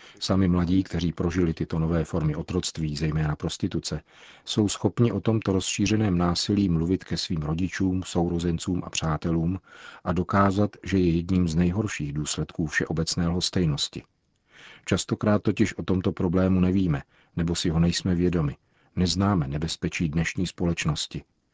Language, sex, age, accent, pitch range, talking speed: Czech, male, 50-69, native, 85-95 Hz, 135 wpm